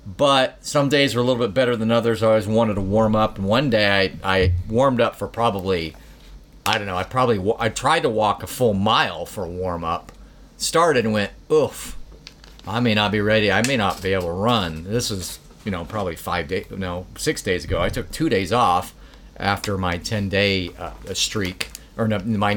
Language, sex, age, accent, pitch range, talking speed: English, male, 40-59, American, 95-115 Hz, 215 wpm